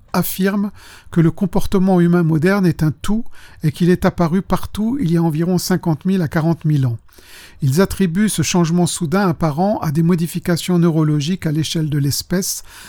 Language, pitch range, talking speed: French, 155-185 Hz, 175 wpm